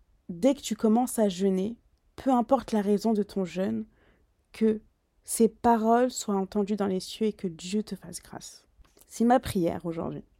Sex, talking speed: female, 180 wpm